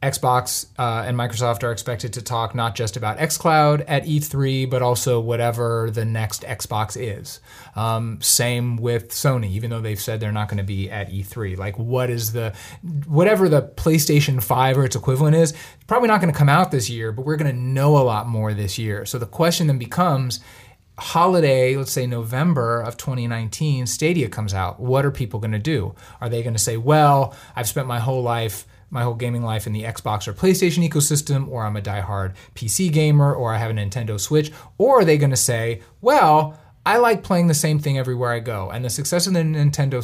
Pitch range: 115-150 Hz